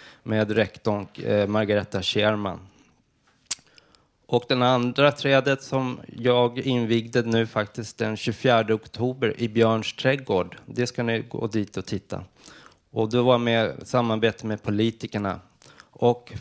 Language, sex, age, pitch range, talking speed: Swedish, male, 20-39, 105-125 Hz, 130 wpm